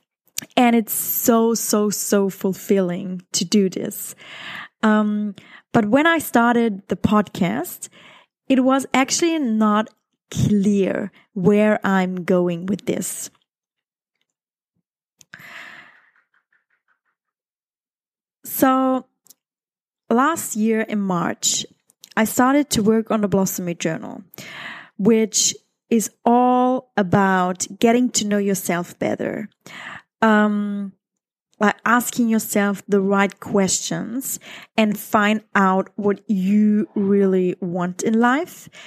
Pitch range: 190-225 Hz